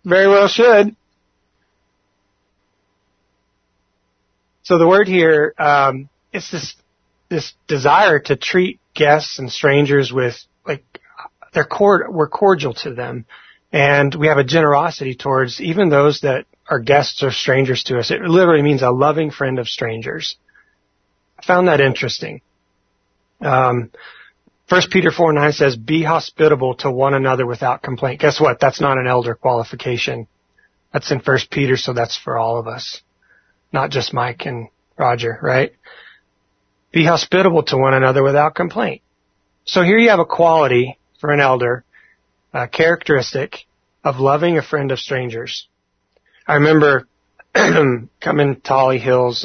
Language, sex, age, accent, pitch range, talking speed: English, male, 30-49, American, 115-155 Hz, 145 wpm